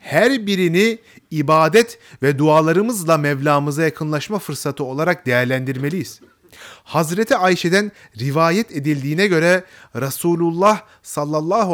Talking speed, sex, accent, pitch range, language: 85 wpm, male, native, 145-195 Hz, Turkish